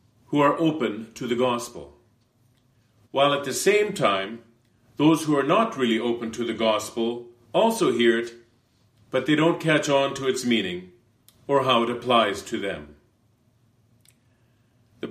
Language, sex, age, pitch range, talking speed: English, male, 40-59, 115-140 Hz, 150 wpm